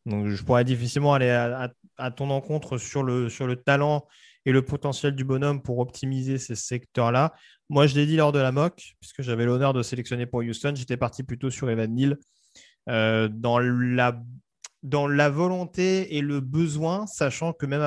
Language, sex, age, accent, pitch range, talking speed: French, male, 30-49, French, 120-145 Hz, 190 wpm